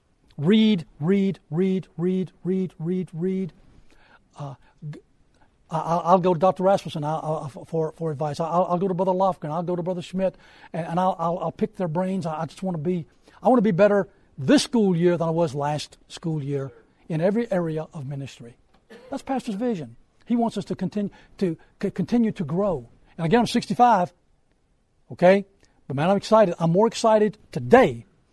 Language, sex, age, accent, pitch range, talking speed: English, male, 60-79, American, 155-195 Hz, 170 wpm